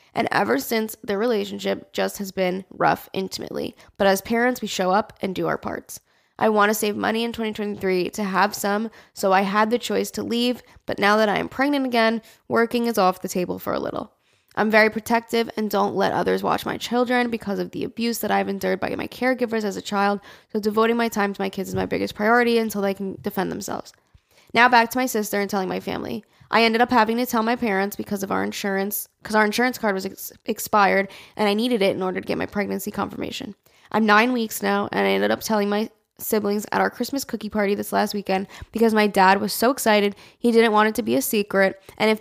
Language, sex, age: English, female, 10-29